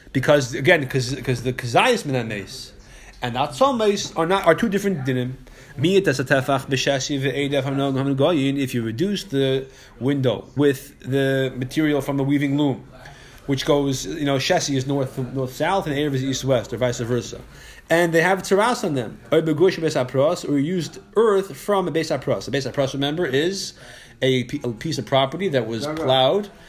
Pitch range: 135-195 Hz